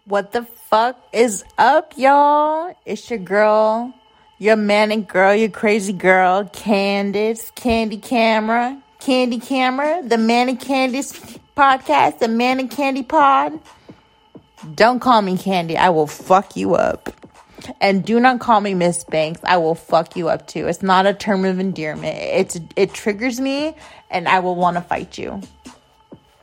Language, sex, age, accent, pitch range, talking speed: English, female, 30-49, American, 200-280 Hz, 155 wpm